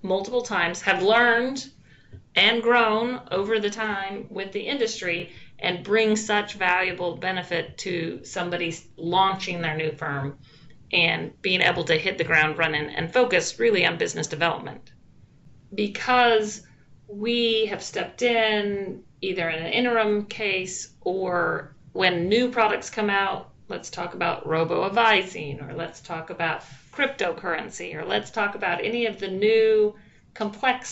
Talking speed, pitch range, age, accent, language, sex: 140 wpm, 170-220 Hz, 40-59, American, English, female